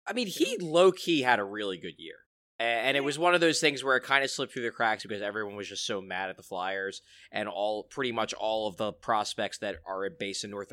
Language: English